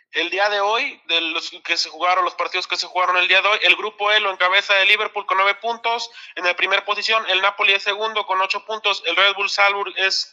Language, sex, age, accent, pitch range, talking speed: Spanish, male, 20-39, Mexican, 170-195 Hz, 255 wpm